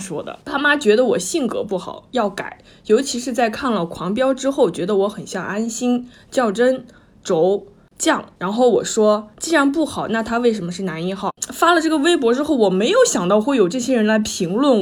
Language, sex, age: Chinese, female, 20-39